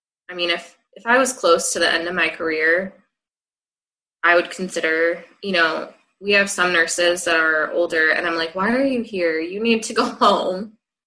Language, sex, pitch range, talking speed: English, female, 165-205 Hz, 200 wpm